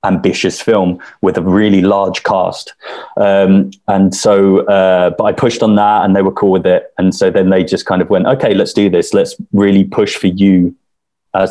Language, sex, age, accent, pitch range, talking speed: English, male, 20-39, British, 90-105 Hz, 210 wpm